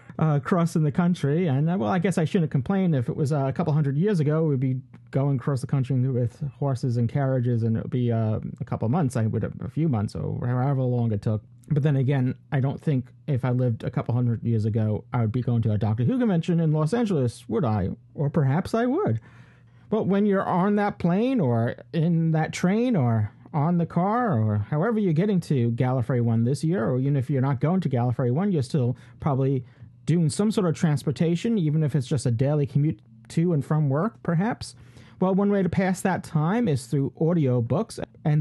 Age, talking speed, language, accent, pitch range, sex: 40-59, 230 wpm, English, American, 125-175 Hz, male